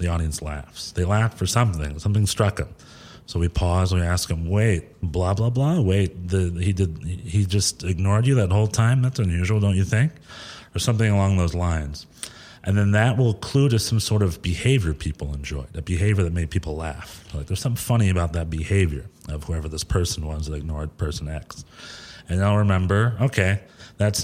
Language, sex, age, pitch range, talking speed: English, male, 40-59, 85-105 Hz, 200 wpm